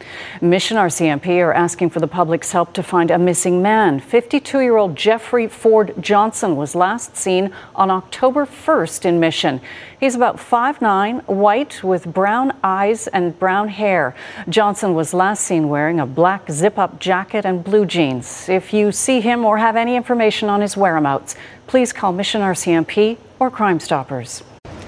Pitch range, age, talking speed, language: 170-220 Hz, 40-59, 155 wpm, English